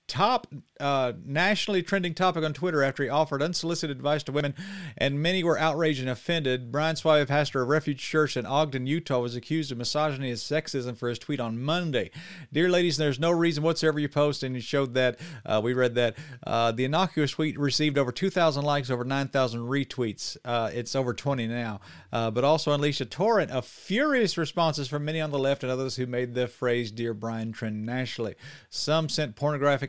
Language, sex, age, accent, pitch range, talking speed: English, male, 40-59, American, 130-160 Hz, 200 wpm